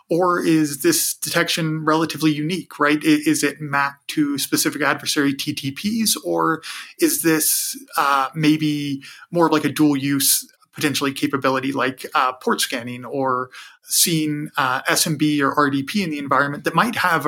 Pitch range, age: 140-160 Hz, 30-49